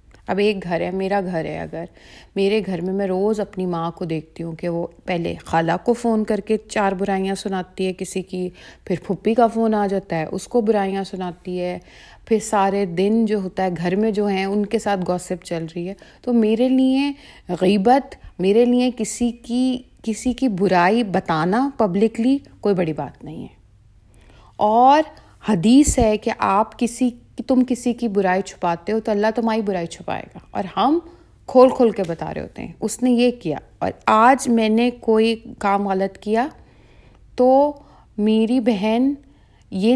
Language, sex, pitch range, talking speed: Urdu, female, 190-240 Hz, 185 wpm